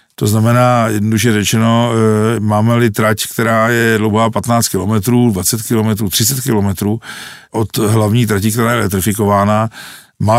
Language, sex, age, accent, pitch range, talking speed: Czech, male, 50-69, native, 105-120 Hz, 125 wpm